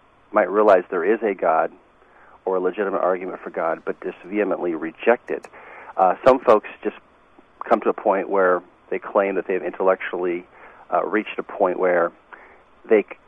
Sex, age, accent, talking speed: male, 40-59, American, 165 wpm